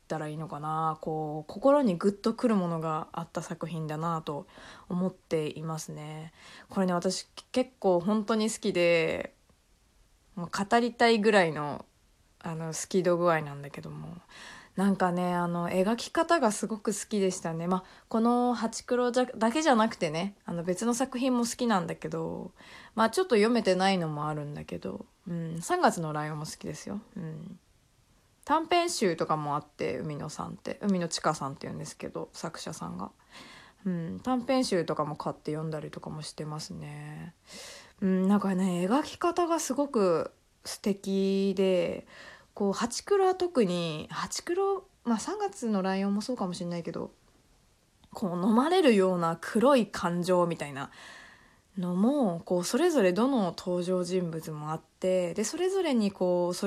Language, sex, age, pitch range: Japanese, female, 20-39, 165-230 Hz